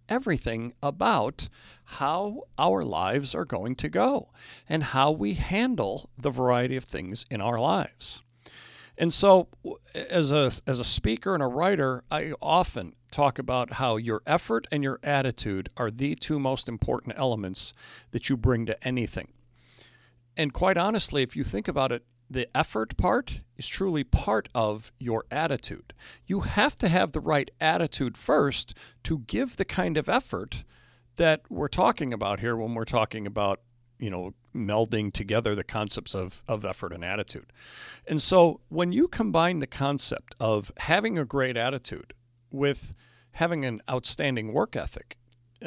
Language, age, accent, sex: English, 40-59, American, male